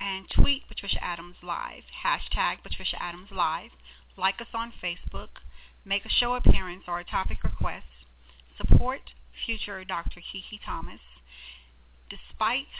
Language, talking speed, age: English, 125 wpm, 40-59